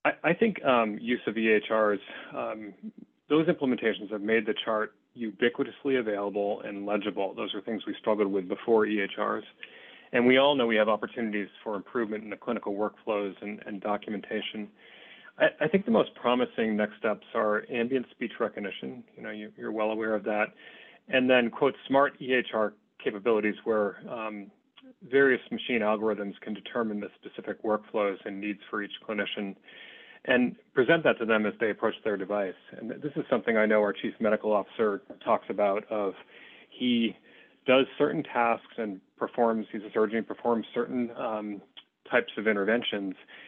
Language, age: English, 30-49